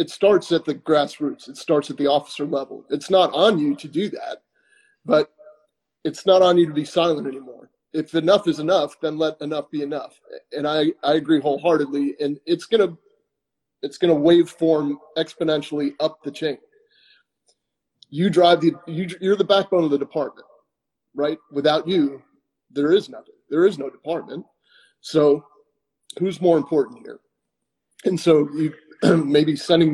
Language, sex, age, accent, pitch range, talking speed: English, male, 30-49, American, 145-185 Hz, 165 wpm